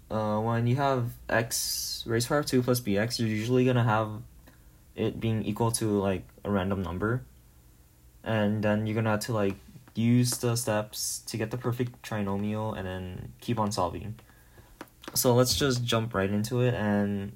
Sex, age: male, 20-39